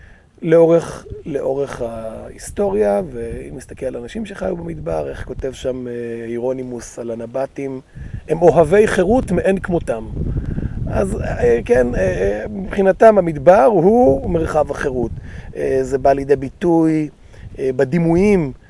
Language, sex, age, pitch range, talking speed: Hebrew, male, 30-49, 120-180 Hz, 105 wpm